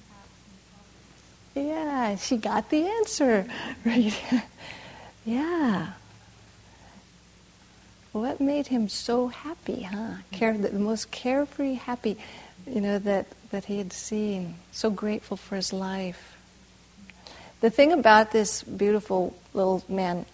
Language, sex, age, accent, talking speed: English, female, 50-69, American, 110 wpm